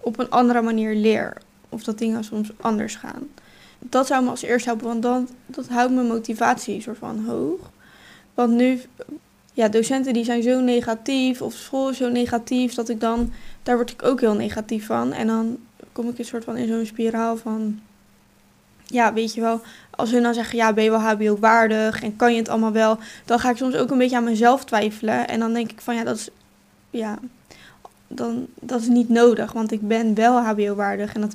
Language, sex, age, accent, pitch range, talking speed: Dutch, female, 10-29, Dutch, 220-245 Hz, 210 wpm